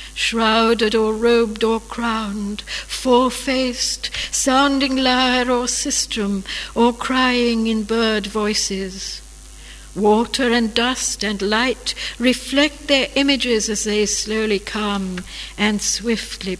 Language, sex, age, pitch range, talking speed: English, female, 60-79, 205-255 Hz, 105 wpm